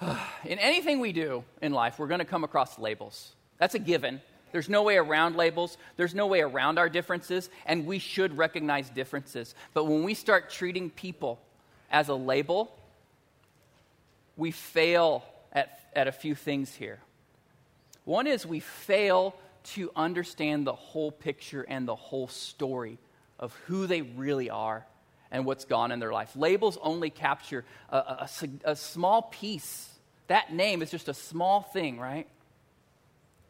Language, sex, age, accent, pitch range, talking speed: English, male, 40-59, American, 145-225 Hz, 160 wpm